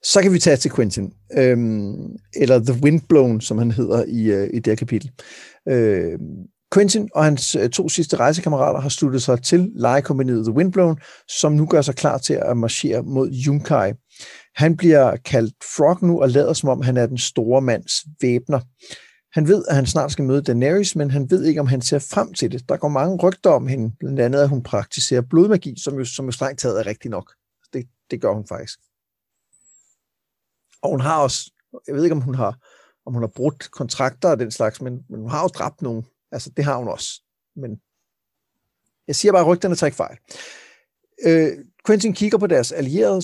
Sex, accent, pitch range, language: male, native, 125-160 Hz, Danish